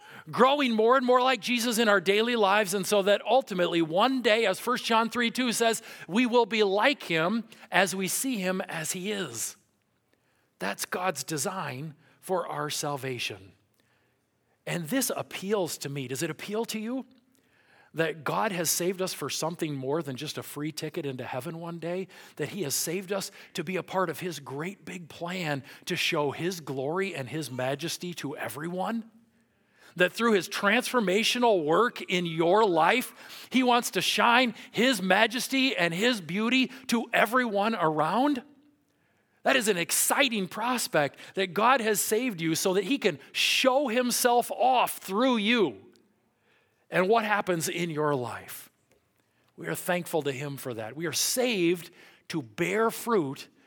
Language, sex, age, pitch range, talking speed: English, male, 40-59, 155-230 Hz, 165 wpm